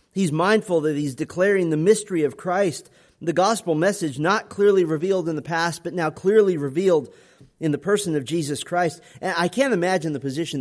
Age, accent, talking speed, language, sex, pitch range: 40-59, American, 190 wpm, English, male, 155-205 Hz